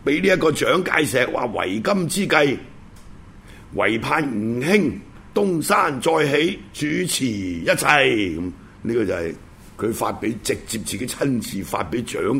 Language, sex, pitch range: Chinese, male, 105-160 Hz